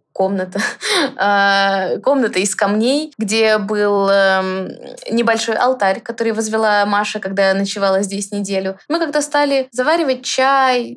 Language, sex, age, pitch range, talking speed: Russian, female, 20-39, 195-240 Hz, 125 wpm